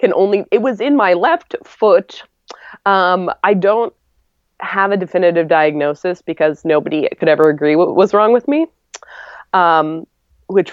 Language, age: English, 20-39